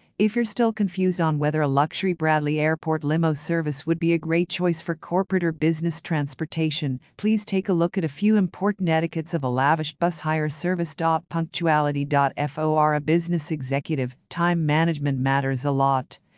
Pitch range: 150-180 Hz